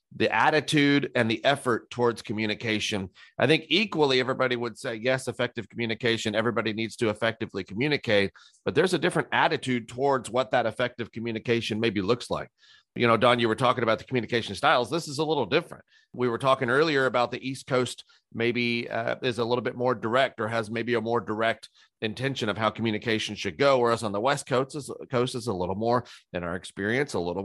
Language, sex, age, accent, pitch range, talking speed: English, male, 40-59, American, 110-130 Hz, 205 wpm